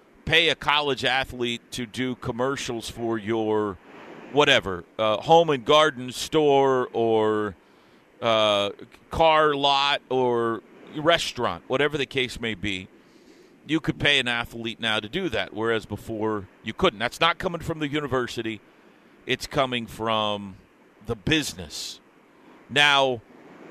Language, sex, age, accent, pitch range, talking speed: English, male, 40-59, American, 115-155 Hz, 130 wpm